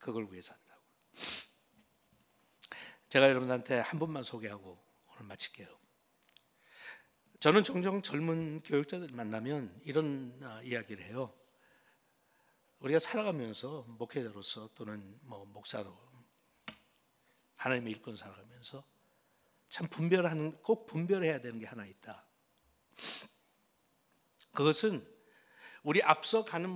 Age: 60-79